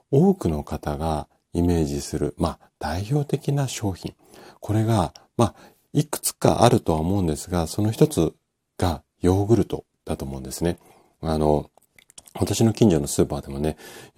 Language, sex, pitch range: Japanese, male, 75-100 Hz